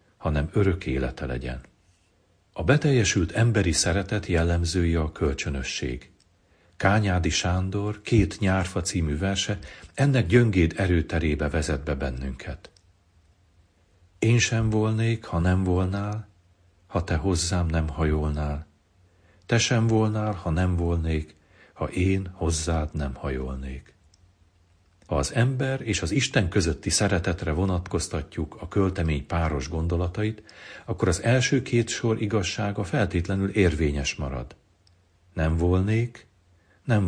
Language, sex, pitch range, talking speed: Hungarian, male, 80-105 Hz, 115 wpm